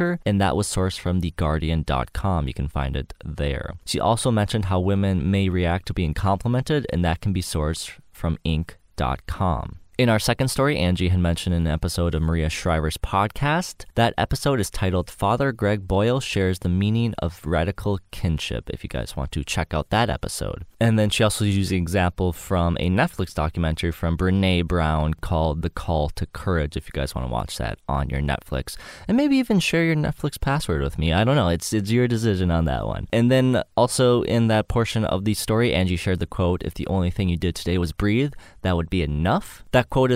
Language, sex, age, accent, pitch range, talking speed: English, male, 20-39, American, 85-110 Hz, 205 wpm